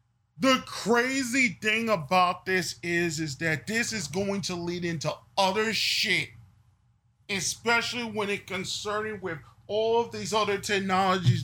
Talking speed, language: 135 wpm, English